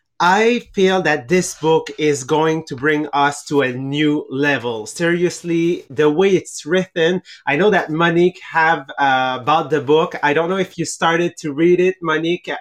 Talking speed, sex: 180 wpm, male